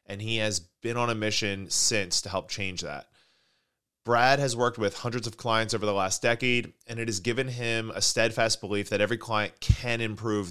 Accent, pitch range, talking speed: American, 105-125 Hz, 205 wpm